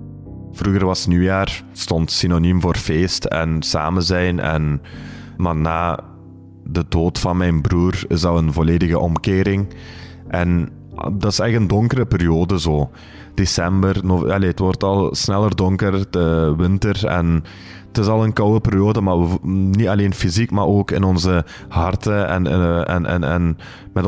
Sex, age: male, 20-39